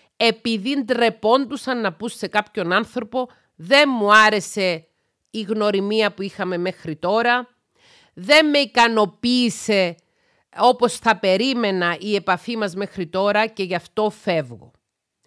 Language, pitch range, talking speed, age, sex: Greek, 185-245 Hz, 120 wpm, 40-59, female